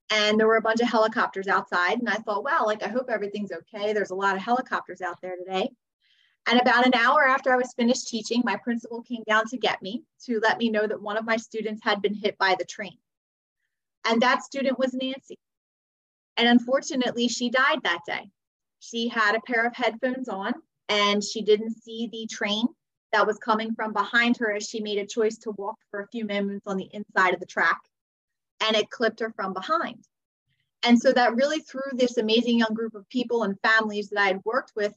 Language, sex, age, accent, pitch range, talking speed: English, female, 30-49, American, 205-240 Hz, 220 wpm